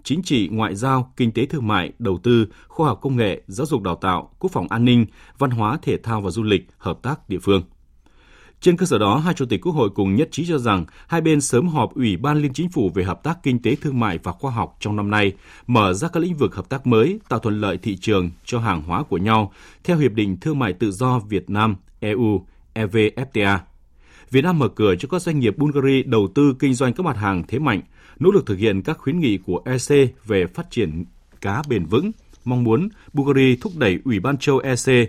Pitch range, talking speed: 100-140 Hz, 240 wpm